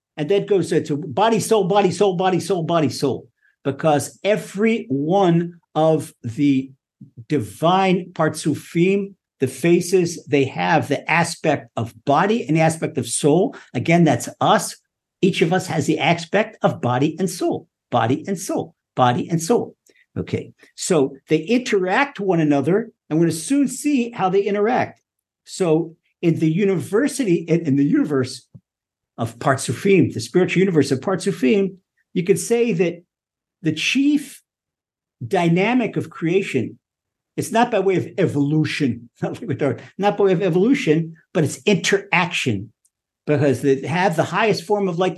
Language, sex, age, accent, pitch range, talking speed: English, male, 50-69, American, 150-195 Hz, 150 wpm